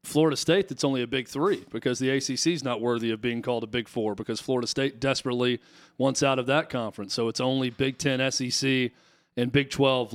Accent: American